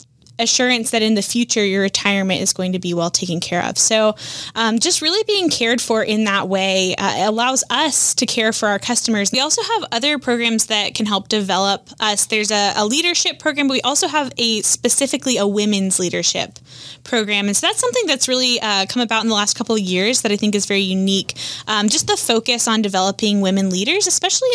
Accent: American